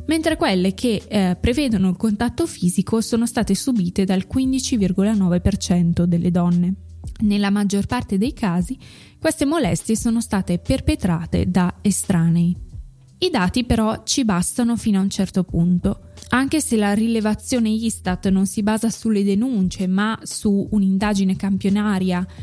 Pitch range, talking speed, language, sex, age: 185-225 Hz, 135 wpm, Italian, female, 20-39